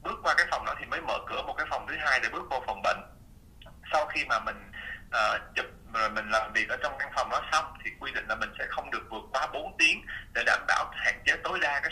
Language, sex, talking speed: Vietnamese, male, 270 wpm